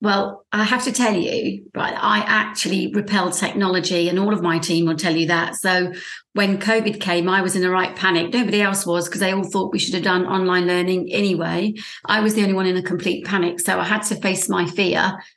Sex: female